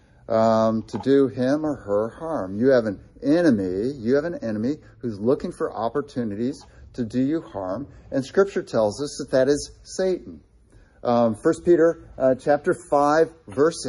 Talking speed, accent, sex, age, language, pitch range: 165 wpm, American, male, 50-69, English, 125-175 Hz